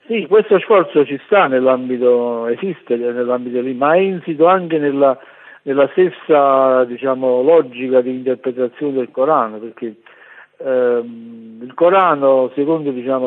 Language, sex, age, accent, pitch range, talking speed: Italian, male, 50-69, native, 120-140 Hz, 125 wpm